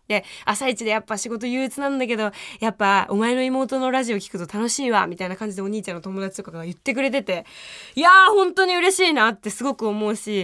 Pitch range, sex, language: 210-285 Hz, female, Japanese